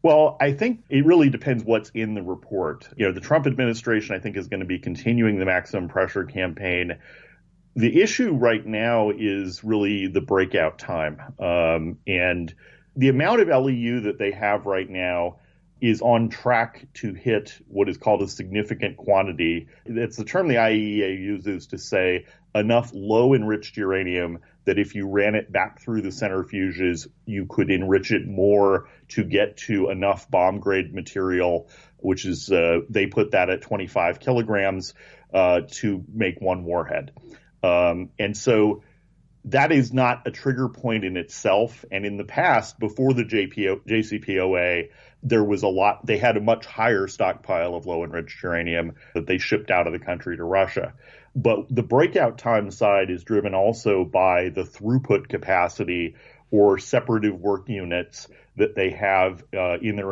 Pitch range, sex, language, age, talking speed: 95-115 Hz, male, English, 40-59, 165 wpm